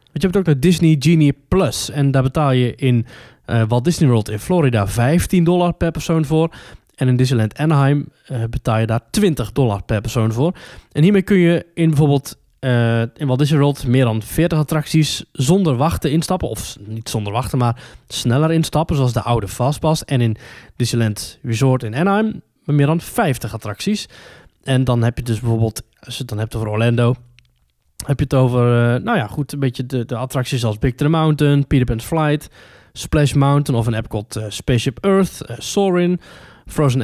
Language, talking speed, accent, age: Dutch, 200 wpm, Dutch, 20-39